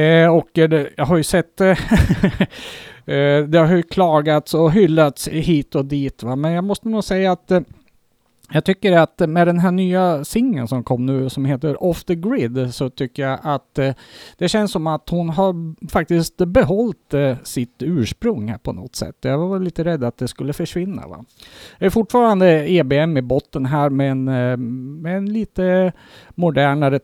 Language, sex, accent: Swedish, male, Norwegian